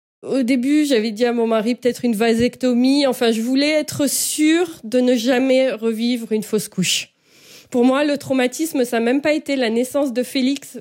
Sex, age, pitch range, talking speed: female, 20-39, 225-280 Hz, 195 wpm